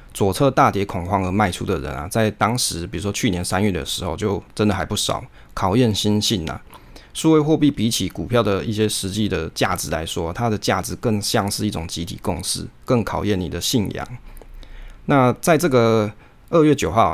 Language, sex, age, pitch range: Chinese, male, 20-39, 95-115 Hz